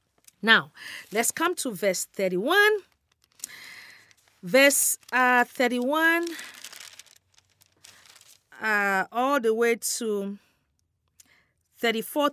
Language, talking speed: English, 75 wpm